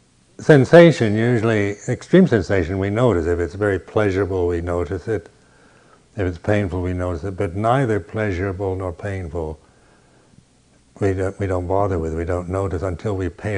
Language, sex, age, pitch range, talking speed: English, male, 60-79, 95-115 Hz, 165 wpm